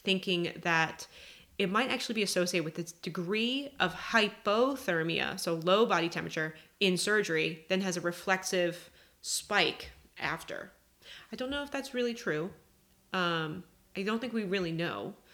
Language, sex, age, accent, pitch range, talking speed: English, female, 30-49, American, 165-200 Hz, 150 wpm